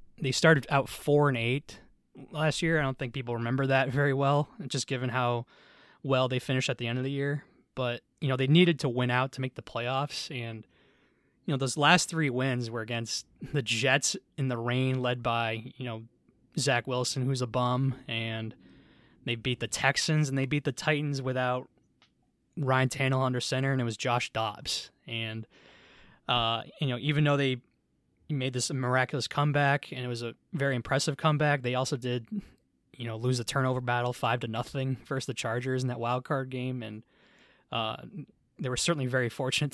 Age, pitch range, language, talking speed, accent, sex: 20-39, 125-145 Hz, English, 195 wpm, American, male